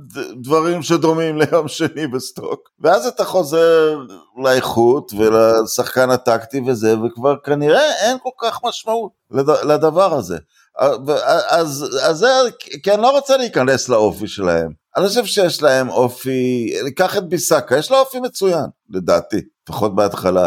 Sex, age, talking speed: male, 50-69, 130 wpm